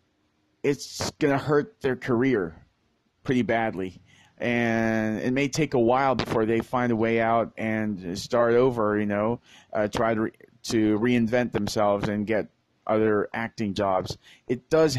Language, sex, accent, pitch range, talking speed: English, male, American, 110-130 Hz, 155 wpm